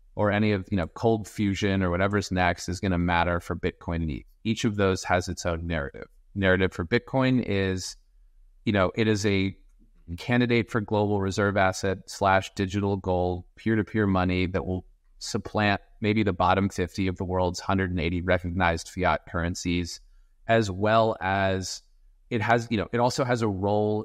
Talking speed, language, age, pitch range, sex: 180 wpm, English, 30-49, 90-110 Hz, male